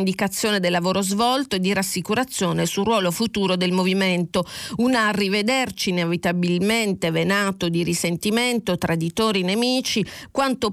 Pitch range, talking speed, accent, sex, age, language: 175-220 Hz, 120 wpm, native, female, 40-59, Italian